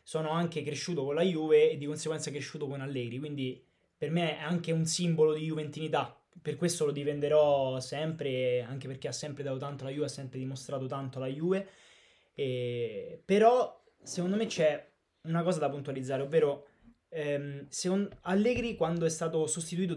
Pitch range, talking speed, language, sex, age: 145-180 Hz, 165 wpm, Italian, male, 20-39